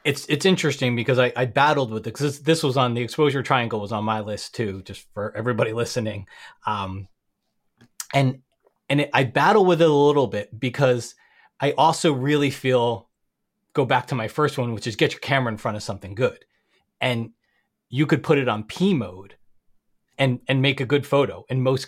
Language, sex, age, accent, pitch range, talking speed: English, male, 30-49, American, 115-140 Hz, 205 wpm